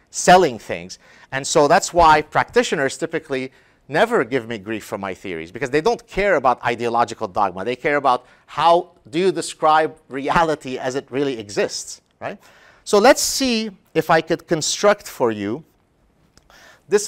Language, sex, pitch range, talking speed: English, male, 135-175 Hz, 160 wpm